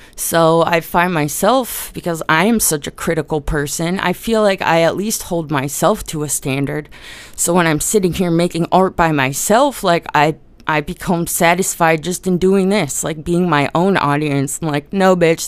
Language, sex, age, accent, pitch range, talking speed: English, female, 20-39, American, 155-210 Hz, 190 wpm